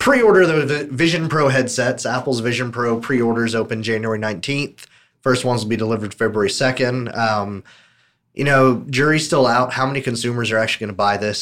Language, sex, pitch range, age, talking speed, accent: English, male, 105-125 Hz, 30-49, 180 wpm, American